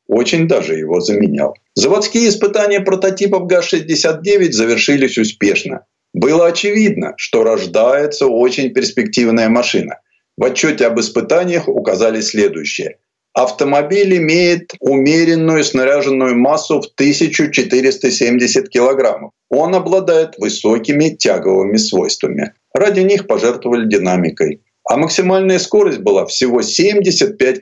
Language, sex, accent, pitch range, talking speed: Russian, male, native, 120-195 Hz, 100 wpm